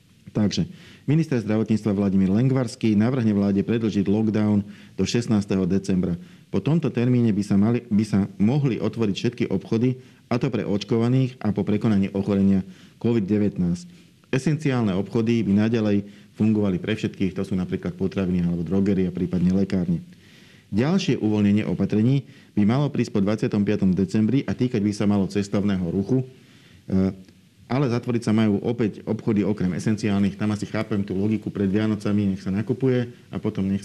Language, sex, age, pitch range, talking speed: Slovak, male, 40-59, 100-115 Hz, 150 wpm